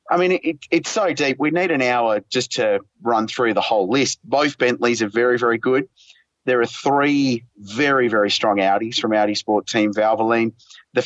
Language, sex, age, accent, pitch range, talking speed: English, male, 30-49, Australian, 110-145 Hz, 195 wpm